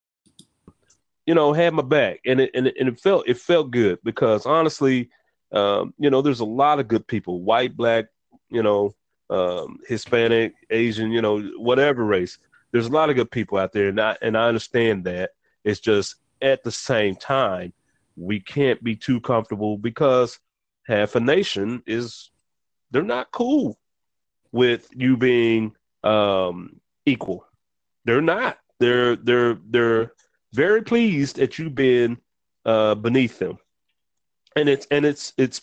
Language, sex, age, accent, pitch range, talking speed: English, male, 30-49, American, 110-150 Hz, 155 wpm